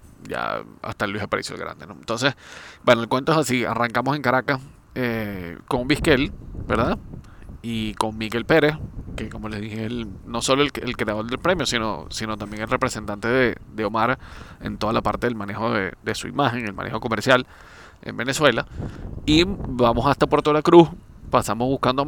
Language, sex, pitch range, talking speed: Spanish, male, 110-130 Hz, 185 wpm